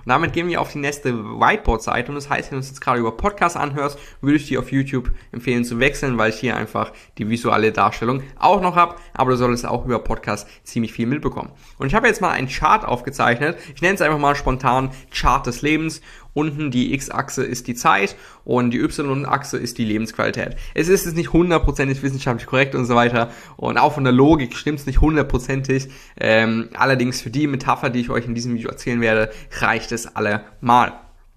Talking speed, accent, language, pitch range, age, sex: 210 wpm, German, German, 120-145 Hz, 20-39, male